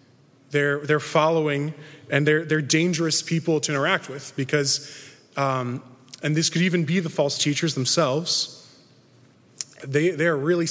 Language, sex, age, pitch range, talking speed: English, male, 20-39, 130-155 Hz, 140 wpm